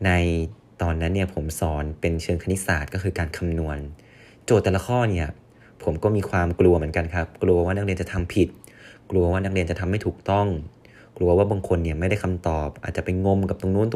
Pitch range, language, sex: 85-100 Hz, Thai, male